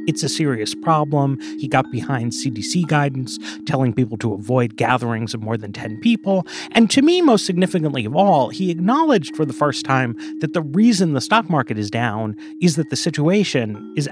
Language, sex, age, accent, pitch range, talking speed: English, male, 30-49, American, 115-160 Hz, 190 wpm